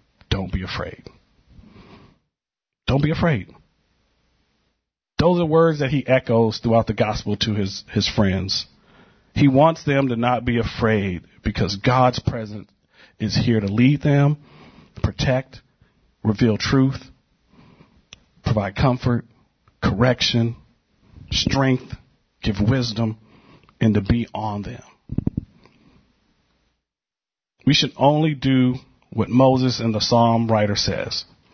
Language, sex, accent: English, male, American